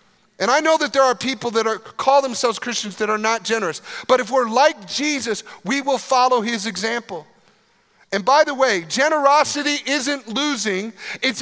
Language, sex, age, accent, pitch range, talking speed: English, male, 40-59, American, 165-255 Hz, 180 wpm